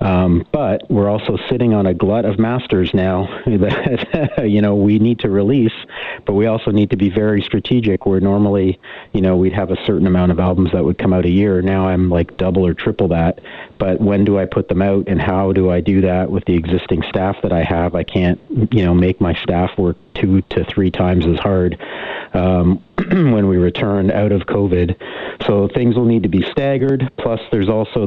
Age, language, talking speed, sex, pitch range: 40-59, English, 215 wpm, male, 95-110 Hz